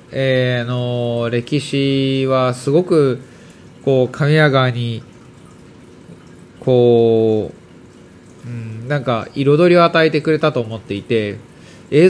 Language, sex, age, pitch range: Japanese, male, 20-39, 120-160 Hz